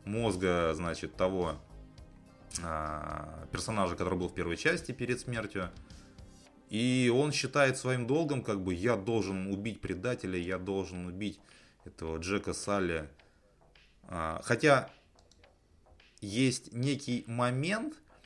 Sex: male